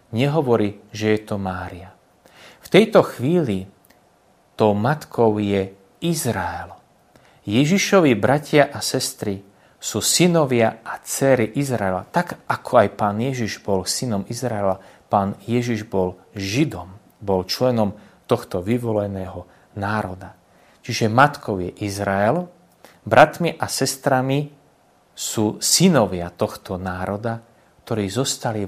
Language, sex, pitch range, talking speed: Slovak, male, 100-140 Hz, 105 wpm